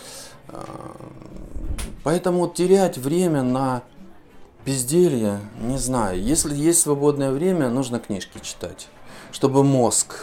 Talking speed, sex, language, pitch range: 95 wpm, male, Russian, 110-170 Hz